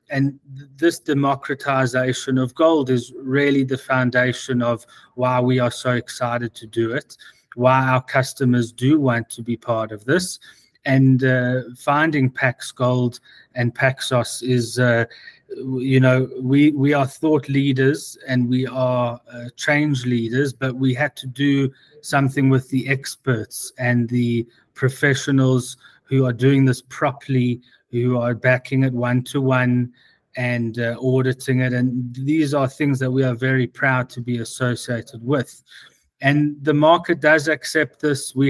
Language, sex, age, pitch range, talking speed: English, male, 30-49, 125-140 Hz, 150 wpm